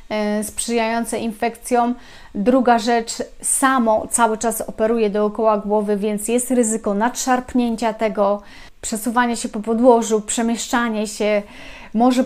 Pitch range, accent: 210-235 Hz, native